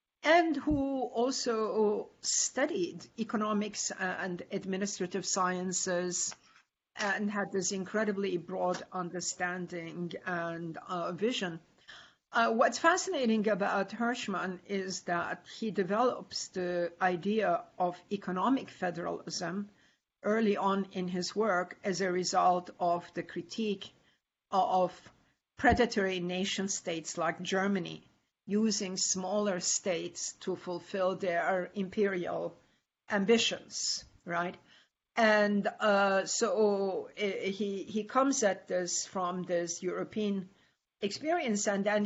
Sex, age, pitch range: female, 50-69, 180-210 Hz